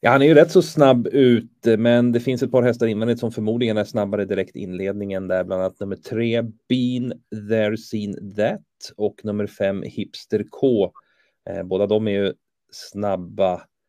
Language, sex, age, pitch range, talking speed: Swedish, male, 30-49, 95-115 Hz, 180 wpm